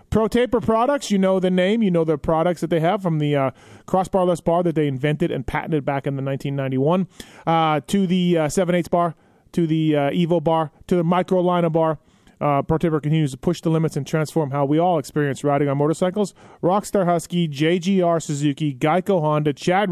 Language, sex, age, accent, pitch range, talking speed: English, male, 30-49, American, 145-175 Hz, 200 wpm